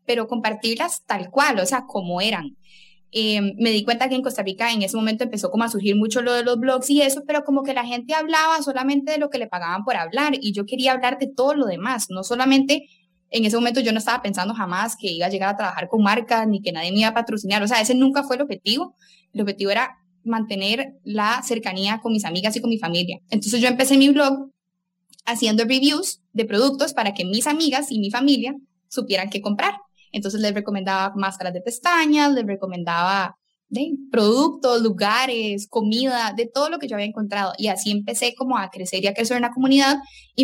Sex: female